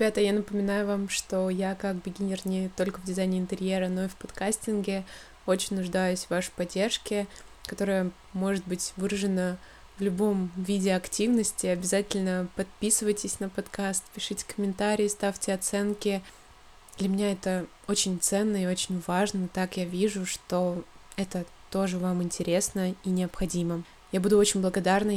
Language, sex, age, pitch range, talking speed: Russian, female, 20-39, 180-200 Hz, 145 wpm